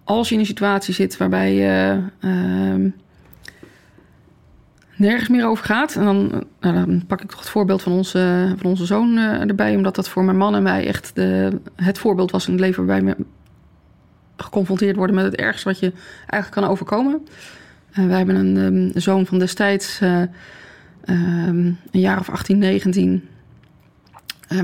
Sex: female